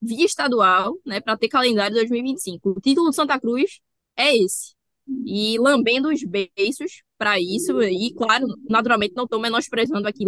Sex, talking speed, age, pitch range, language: female, 160 wpm, 10-29, 205-260 Hz, Portuguese